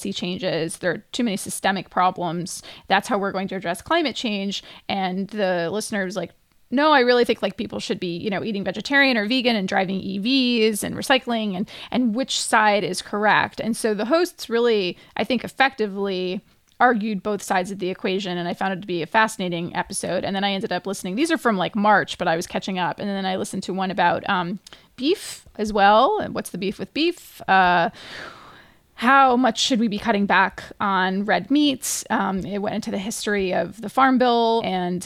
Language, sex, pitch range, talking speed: English, female, 190-235 Hz, 210 wpm